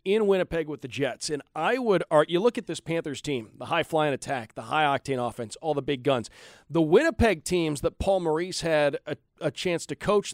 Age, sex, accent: 40-59, male, American